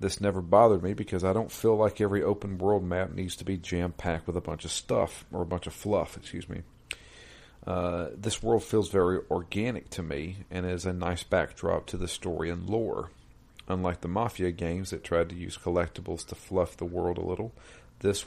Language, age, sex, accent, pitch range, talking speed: English, 40-59, male, American, 85-100 Hz, 205 wpm